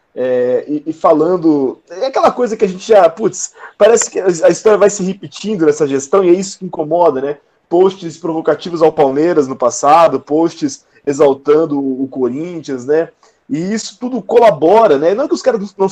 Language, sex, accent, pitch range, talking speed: Portuguese, male, Brazilian, 150-205 Hz, 180 wpm